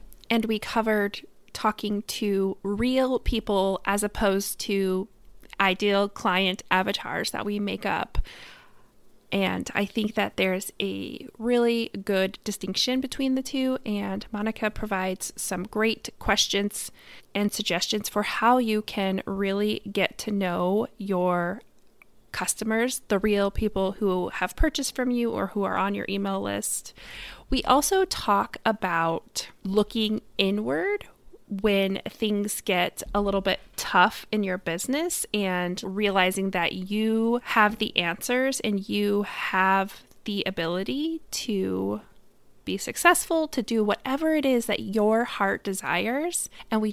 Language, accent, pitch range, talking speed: English, American, 195-230 Hz, 135 wpm